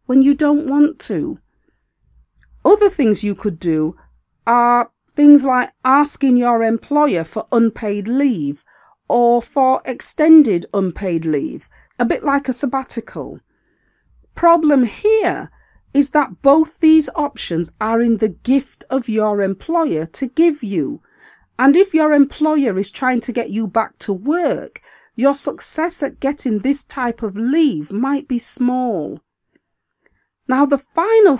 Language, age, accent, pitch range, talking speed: English, 40-59, British, 220-295 Hz, 140 wpm